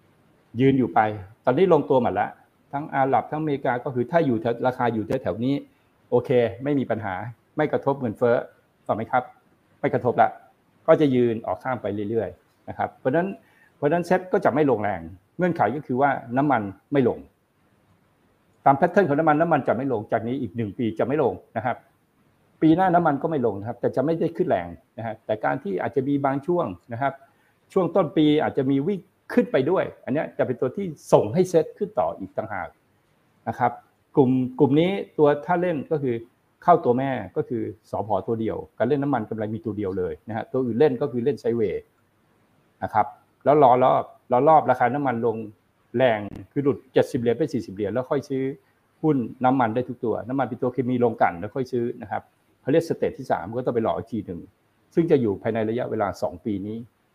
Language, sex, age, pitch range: Thai, male, 60-79, 115-150 Hz